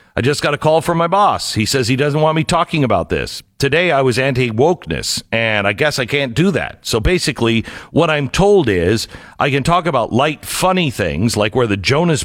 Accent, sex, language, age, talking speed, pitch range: American, male, English, 50-69, 220 wpm, 95-140 Hz